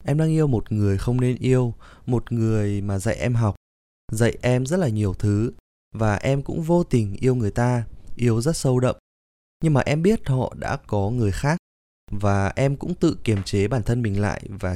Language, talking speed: Vietnamese, 210 wpm